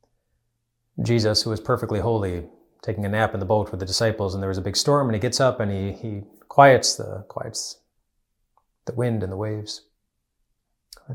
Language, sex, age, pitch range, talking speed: English, male, 30-49, 95-115 Hz, 195 wpm